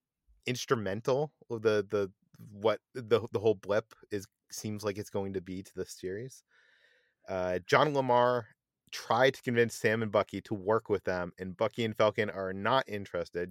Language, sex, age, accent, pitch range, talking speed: English, male, 30-49, American, 105-130 Hz, 170 wpm